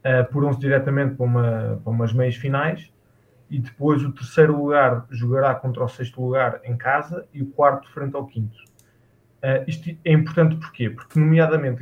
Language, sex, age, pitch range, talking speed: Portuguese, male, 20-39, 120-140 Hz, 180 wpm